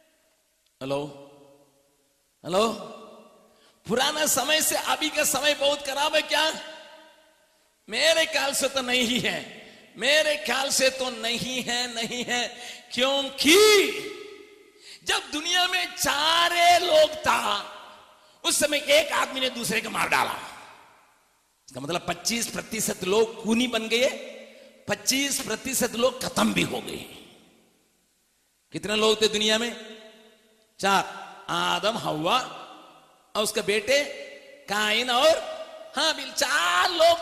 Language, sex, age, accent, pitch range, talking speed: Hindi, male, 50-69, native, 210-310 Hz, 120 wpm